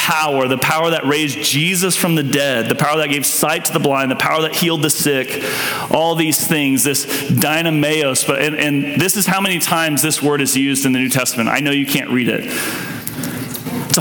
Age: 30-49